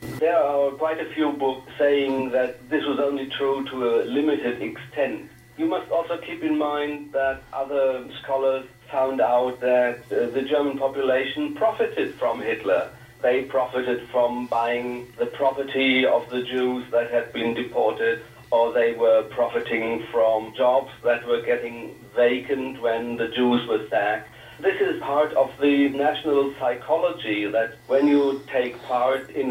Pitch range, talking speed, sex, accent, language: 125-145 Hz, 155 wpm, male, German, English